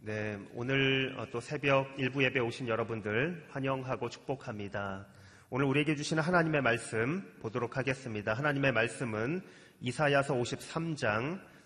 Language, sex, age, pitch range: Korean, male, 30-49, 115-140 Hz